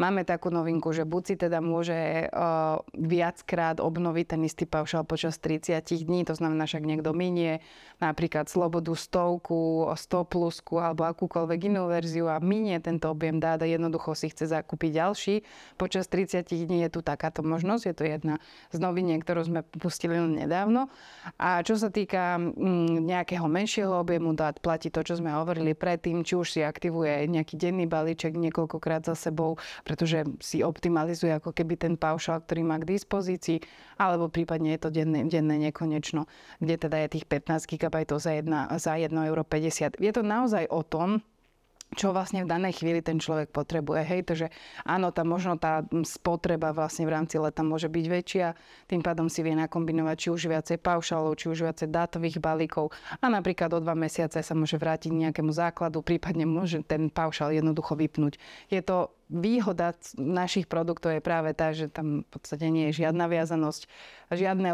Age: 20-39